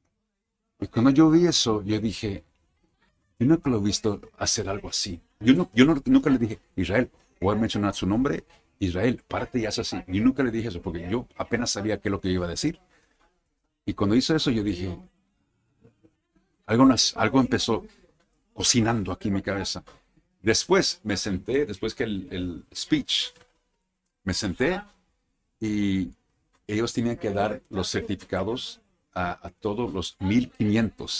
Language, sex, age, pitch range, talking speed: Spanish, male, 50-69, 100-135 Hz, 165 wpm